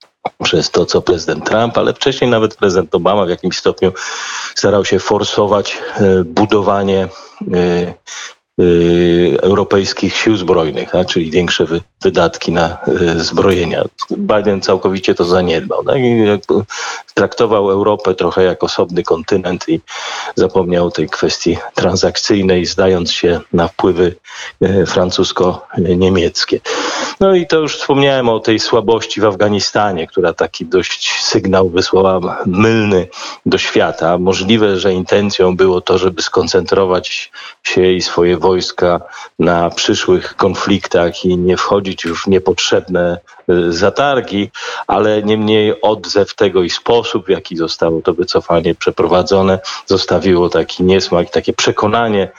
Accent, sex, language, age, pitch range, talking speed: native, male, Polish, 40-59, 90-105 Hz, 120 wpm